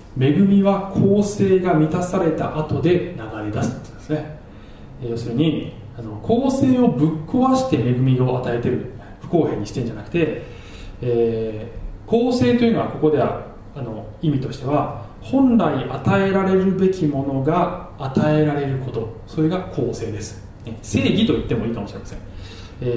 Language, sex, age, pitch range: Japanese, male, 20-39, 110-155 Hz